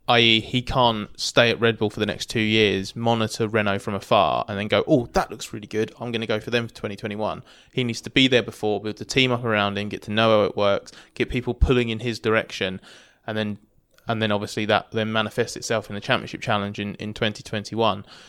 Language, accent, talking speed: English, British, 240 wpm